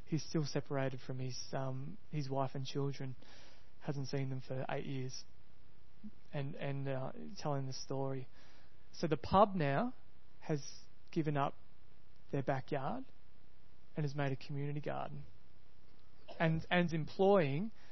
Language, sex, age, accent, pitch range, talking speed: English, male, 20-39, Australian, 140-165 Hz, 135 wpm